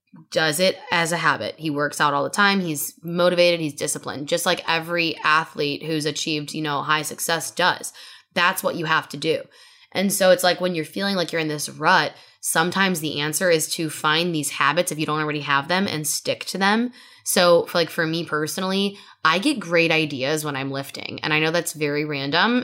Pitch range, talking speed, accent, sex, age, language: 155-200 Hz, 215 wpm, American, female, 10-29, English